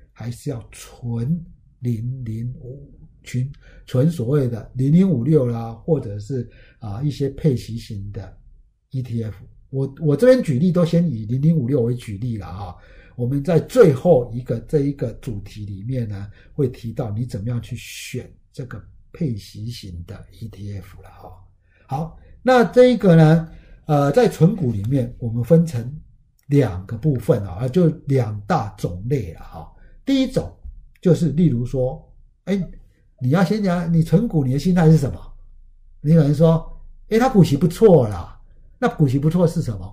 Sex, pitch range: male, 115-165 Hz